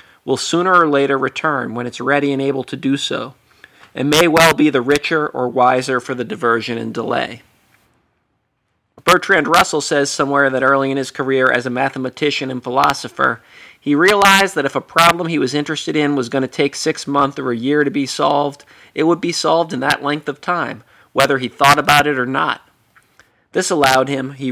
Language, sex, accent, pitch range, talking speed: English, male, American, 130-155 Hz, 200 wpm